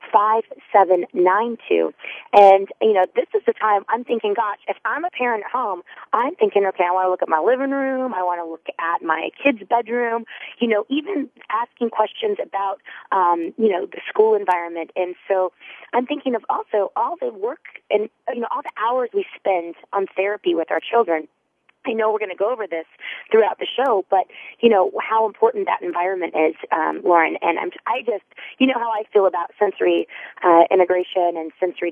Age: 30-49